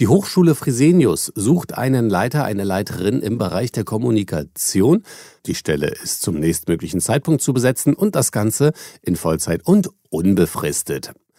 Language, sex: German, male